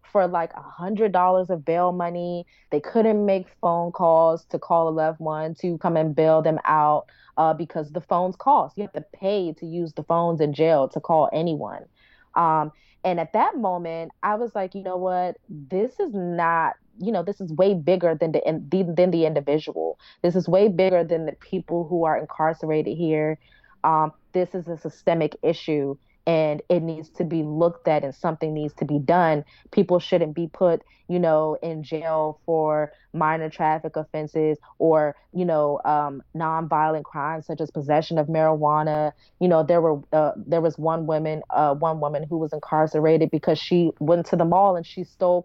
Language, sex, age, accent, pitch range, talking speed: English, female, 20-39, American, 155-180 Hz, 185 wpm